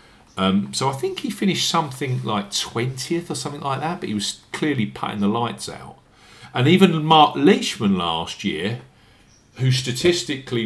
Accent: British